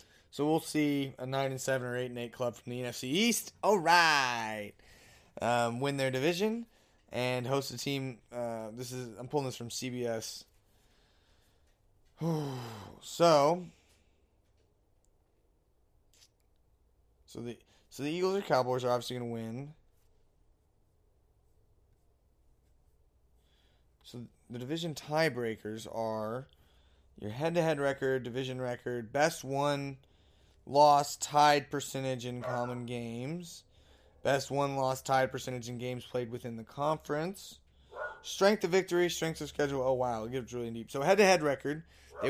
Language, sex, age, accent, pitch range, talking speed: English, male, 20-39, American, 100-140 Hz, 135 wpm